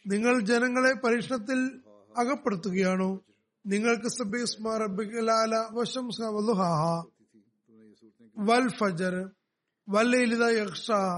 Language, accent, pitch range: Malayalam, native, 195-245 Hz